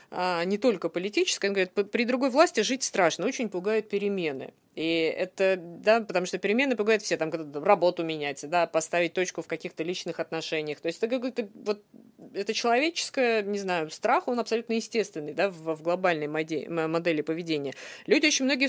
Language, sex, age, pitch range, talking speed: Russian, female, 20-39, 170-230 Hz, 180 wpm